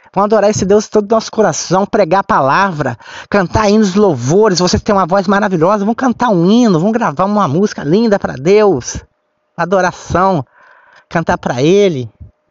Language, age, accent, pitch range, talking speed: Portuguese, 20-39, Brazilian, 175-235 Hz, 175 wpm